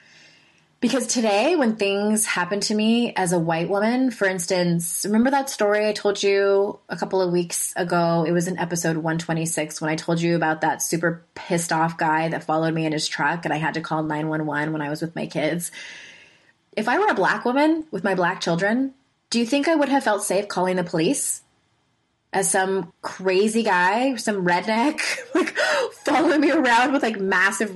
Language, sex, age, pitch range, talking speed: English, female, 20-39, 170-235 Hz, 195 wpm